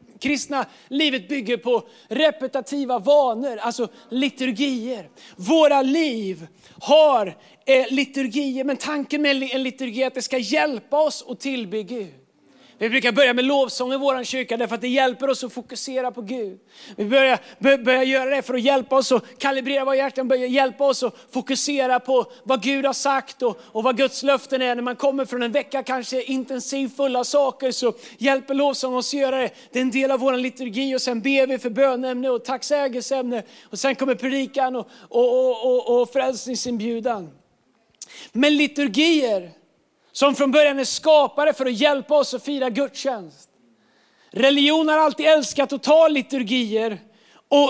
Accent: native